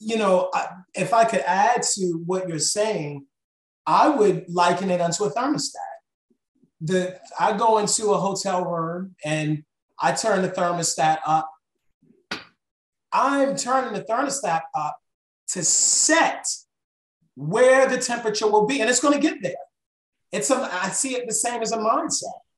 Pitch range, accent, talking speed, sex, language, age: 190-270 Hz, American, 150 wpm, male, English, 30-49